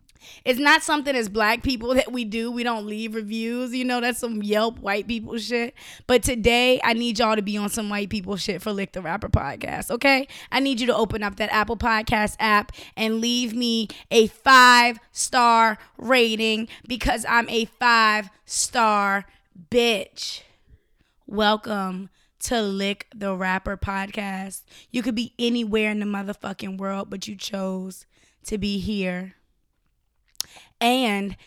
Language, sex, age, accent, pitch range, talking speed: English, female, 20-39, American, 210-245 Hz, 160 wpm